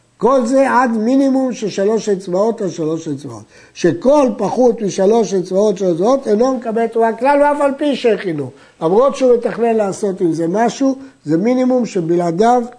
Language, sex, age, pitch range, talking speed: Hebrew, male, 60-79, 170-230 Hz, 145 wpm